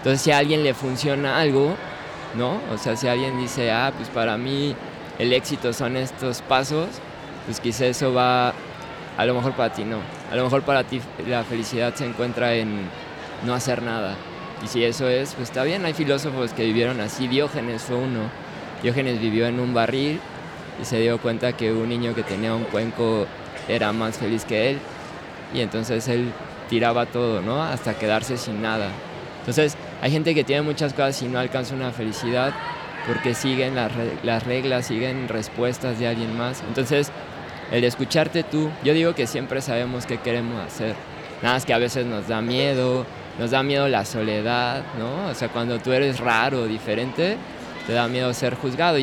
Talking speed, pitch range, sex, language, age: 185 wpm, 115-135 Hz, male, Spanish, 20-39